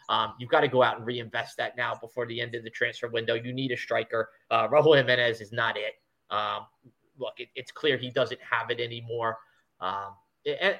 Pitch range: 120-135 Hz